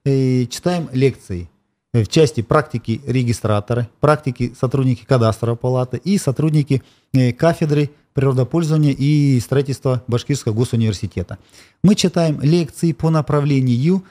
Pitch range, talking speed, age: 120-150 Hz, 100 wpm, 40-59